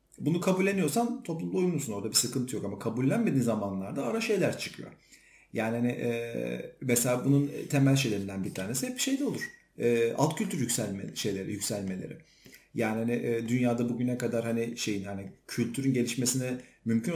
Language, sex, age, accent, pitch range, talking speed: Turkish, male, 40-59, native, 120-160 Hz, 155 wpm